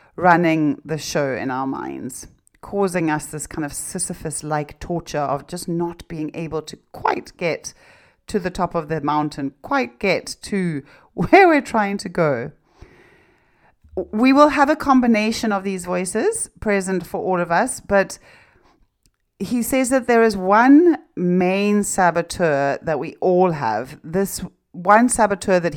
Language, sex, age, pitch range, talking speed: English, female, 40-59, 170-205 Hz, 150 wpm